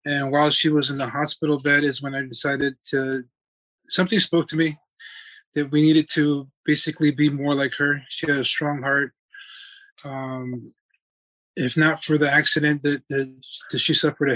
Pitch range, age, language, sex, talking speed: 135-155 Hz, 20-39, English, male, 180 wpm